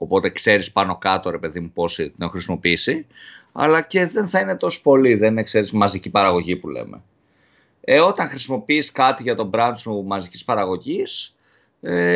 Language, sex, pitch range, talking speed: Greek, male, 95-135 Hz, 180 wpm